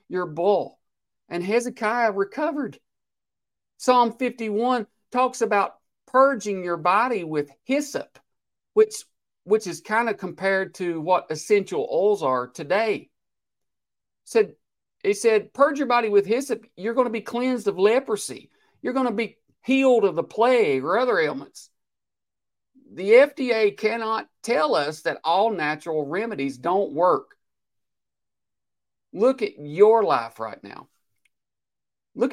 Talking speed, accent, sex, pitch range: 130 wpm, American, male, 170-250 Hz